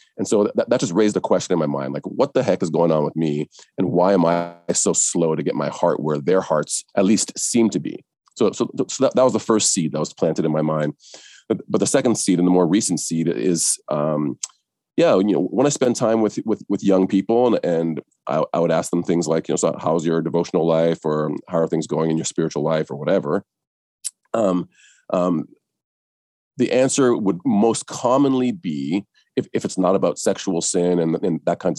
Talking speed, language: 230 wpm, English